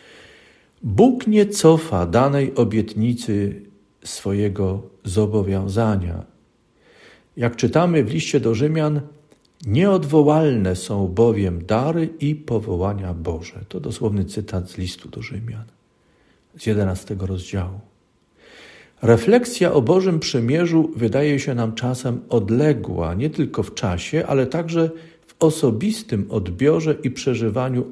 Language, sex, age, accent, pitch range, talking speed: Polish, male, 50-69, native, 105-150 Hz, 105 wpm